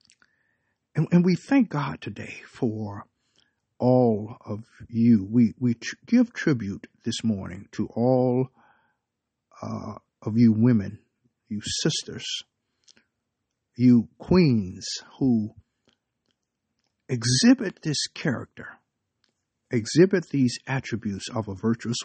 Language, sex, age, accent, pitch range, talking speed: English, male, 60-79, American, 110-130 Hz, 100 wpm